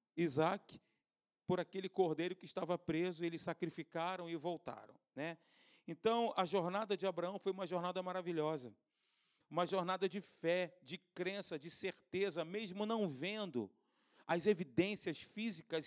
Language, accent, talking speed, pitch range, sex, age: Portuguese, Brazilian, 130 wpm, 175-230 Hz, male, 40-59